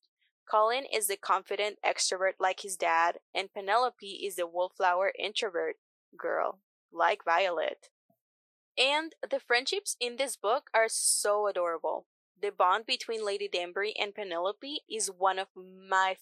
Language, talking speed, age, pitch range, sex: English, 135 wpm, 10-29, 185-250 Hz, female